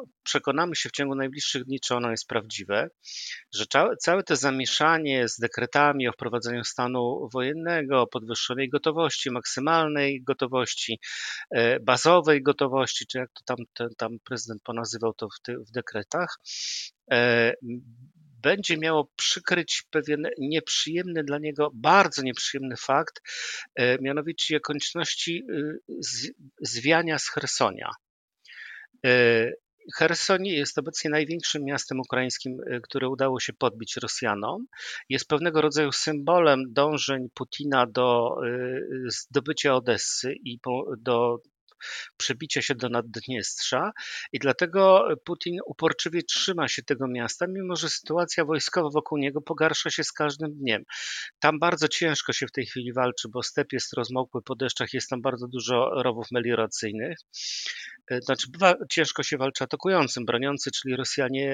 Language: Polish